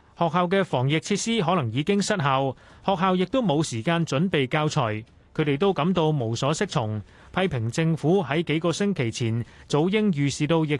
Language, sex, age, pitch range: Chinese, male, 30-49, 130-180 Hz